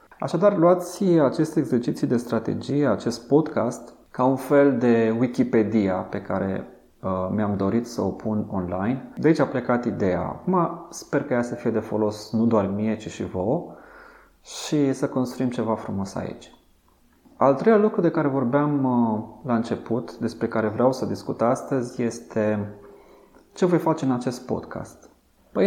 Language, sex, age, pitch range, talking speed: Romanian, male, 30-49, 110-145 Hz, 160 wpm